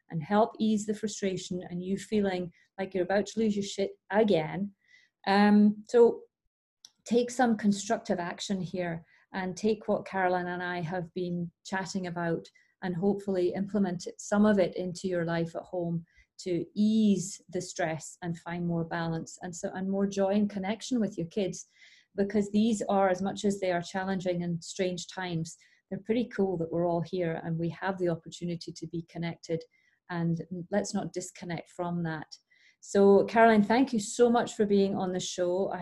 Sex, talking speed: female, 180 wpm